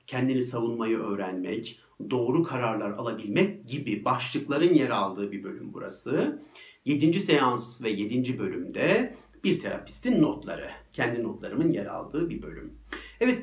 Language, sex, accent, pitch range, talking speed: Turkish, male, native, 125-190 Hz, 125 wpm